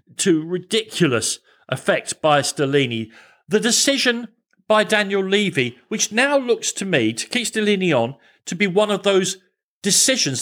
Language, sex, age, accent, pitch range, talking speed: English, male, 50-69, British, 170-230 Hz, 145 wpm